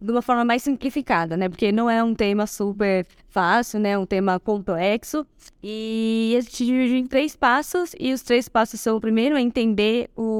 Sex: female